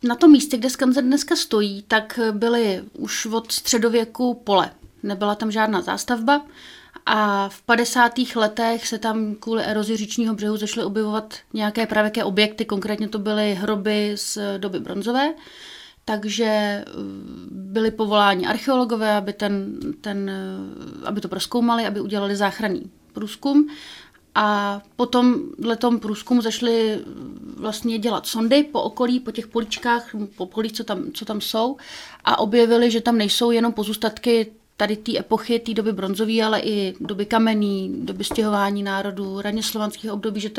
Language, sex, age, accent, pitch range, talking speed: Czech, female, 30-49, native, 210-235 Hz, 145 wpm